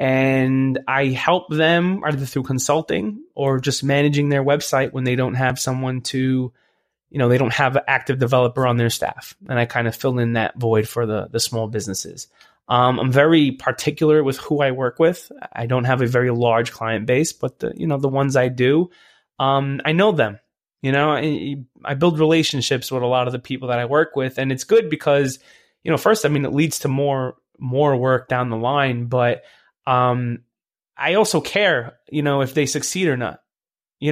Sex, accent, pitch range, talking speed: male, American, 125-145 Hz, 210 wpm